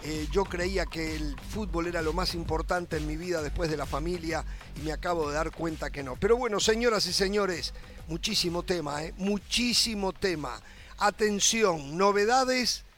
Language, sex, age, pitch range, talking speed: Spanish, male, 50-69, 175-225 Hz, 170 wpm